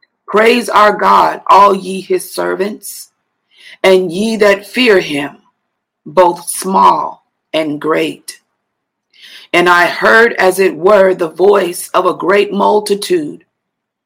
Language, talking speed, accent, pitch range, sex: English, 120 wpm, American, 165-205 Hz, female